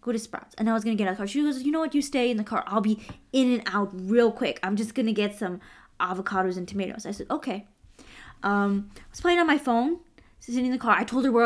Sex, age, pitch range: female, 20-39, 205-260 Hz